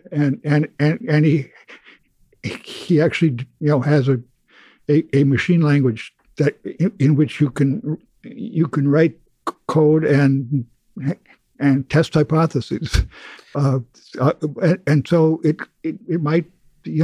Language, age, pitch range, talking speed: English, 60-79, 140-160 Hz, 130 wpm